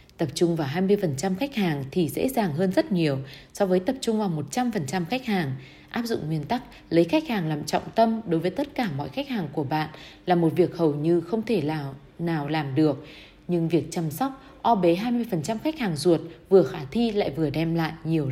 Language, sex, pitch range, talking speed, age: Vietnamese, female, 155-205 Hz, 225 wpm, 20-39